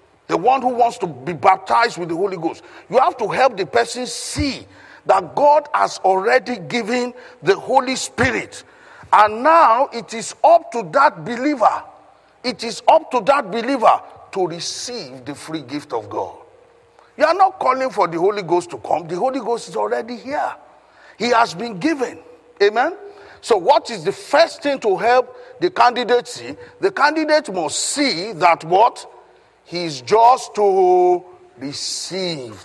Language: English